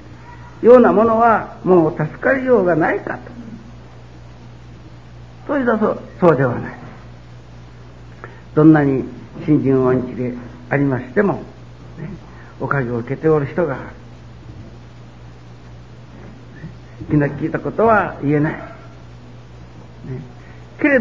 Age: 60-79